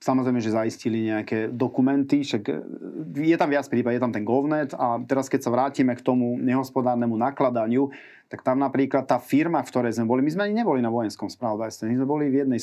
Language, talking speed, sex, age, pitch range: Slovak, 210 wpm, male, 30-49, 120-145 Hz